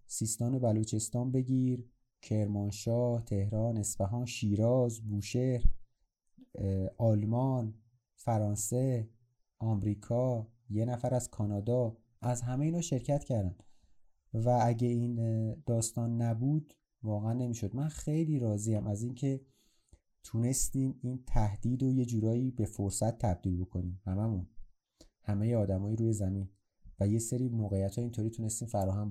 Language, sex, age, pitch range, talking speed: Persian, male, 30-49, 110-135 Hz, 120 wpm